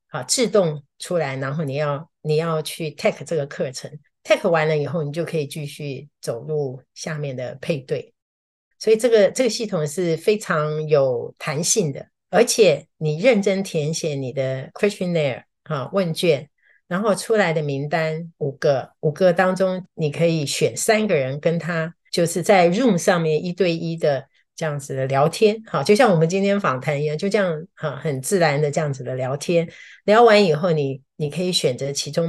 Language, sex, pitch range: Chinese, female, 145-190 Hz